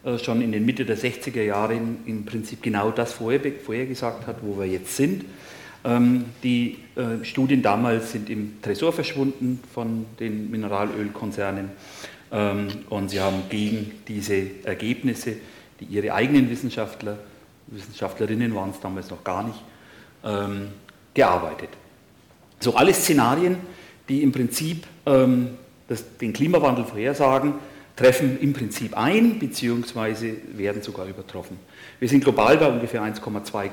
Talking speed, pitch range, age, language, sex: 120 wpm, 105-130 Hz, 40-59, German, male